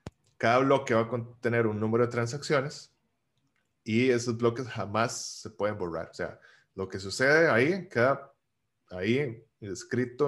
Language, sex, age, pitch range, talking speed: Spanish, male, 10-29, 110-130 Hz, 145 wpm